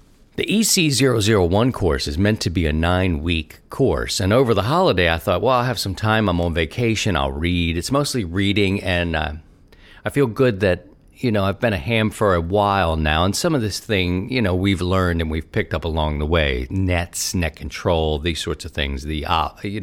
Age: 50-69